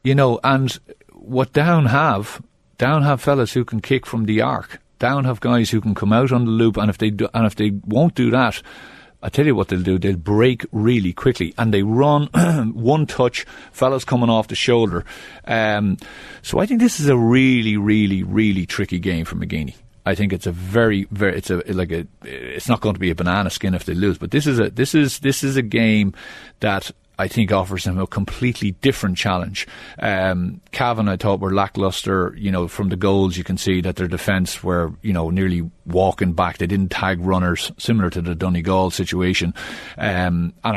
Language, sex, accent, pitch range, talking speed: English, male, Irish, 95-125 Hz, 210 wpm